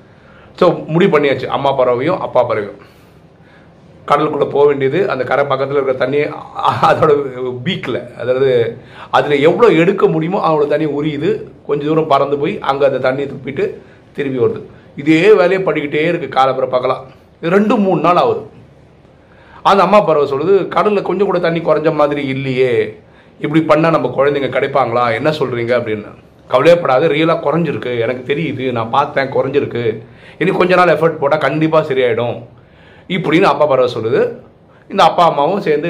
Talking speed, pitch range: 145 wpm, 135-190 Hz